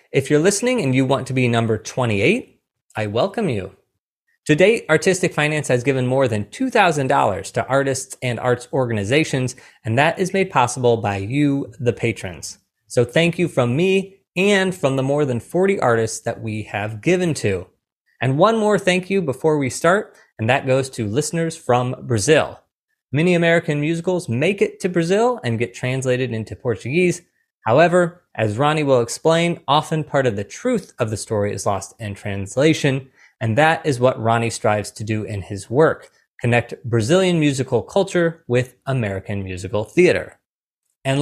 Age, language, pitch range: 20-39, English, 115-170 Hz